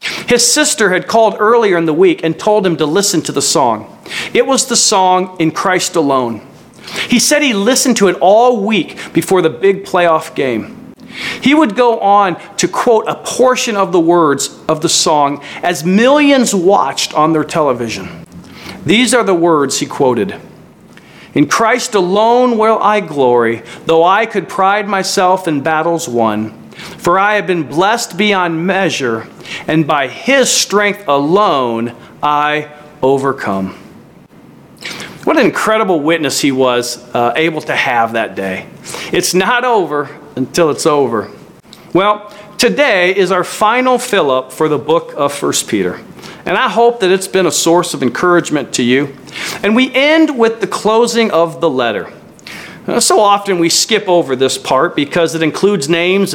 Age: 40-59